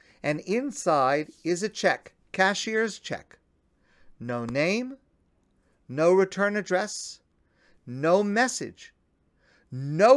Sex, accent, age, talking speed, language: male, American, 50-69, 90 wpm, English